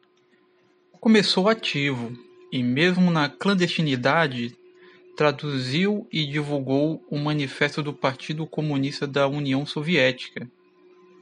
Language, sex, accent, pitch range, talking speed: Portuguese, male, Brazilian, 140-195 Hz, 90 wpm